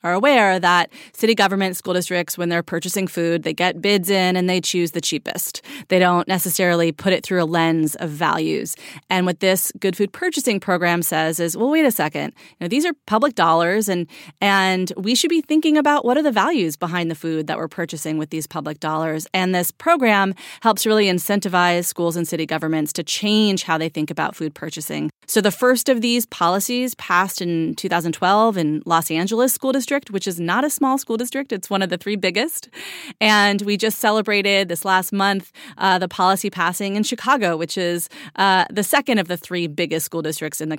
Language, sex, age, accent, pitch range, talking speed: English, female, 30-49, American, 170-215 Hz, 205 wpm